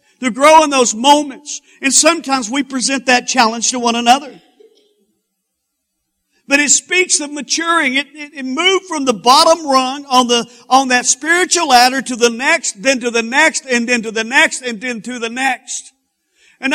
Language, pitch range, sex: English, 225-290 Hz, male